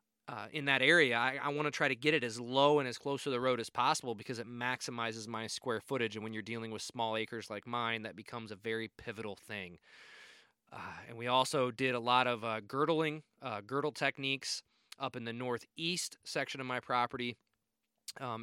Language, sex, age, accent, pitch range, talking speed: English, male, 20-39, American, 115-135 Hz, 210 wpm